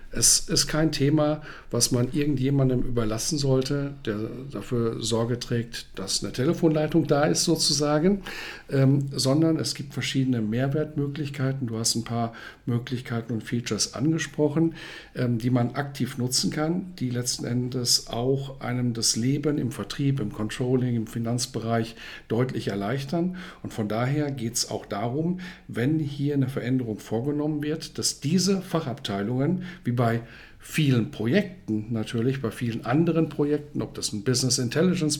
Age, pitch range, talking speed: 50-69, 120-150 Hz, 145 wpm